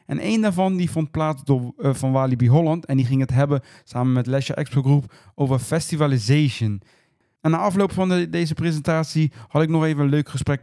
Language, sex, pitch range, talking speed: Dutch, male, 135-170 Hz, 210 wpm